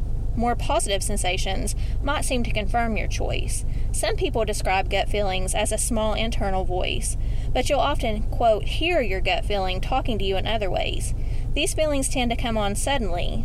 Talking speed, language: 180 wpm, English